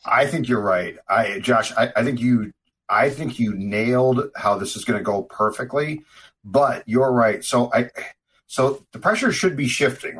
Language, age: English, 40-59